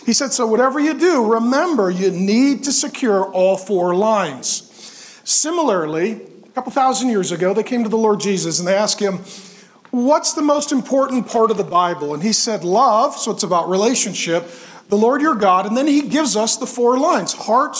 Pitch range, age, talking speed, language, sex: 200-260 Hz, 40-59, 200 wpm, English, male